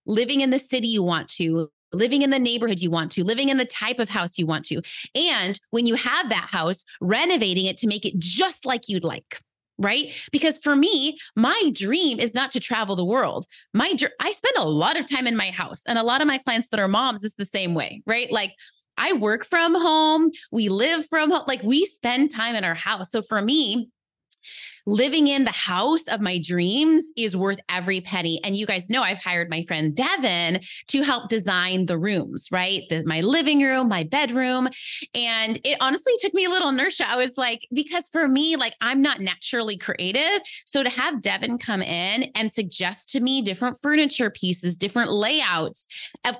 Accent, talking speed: American, 205 wpm